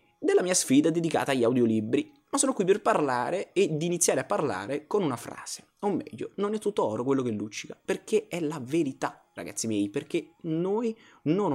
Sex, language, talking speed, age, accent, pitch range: male, Italian, 190 wpm, 20-39, native, 110-180 Hz